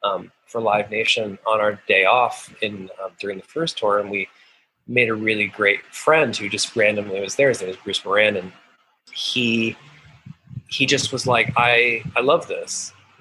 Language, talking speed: English, 190 wpm